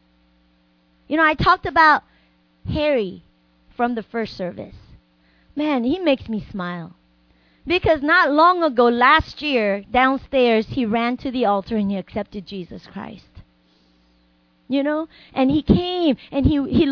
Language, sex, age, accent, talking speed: English, female, 30-49, American, 140 wpm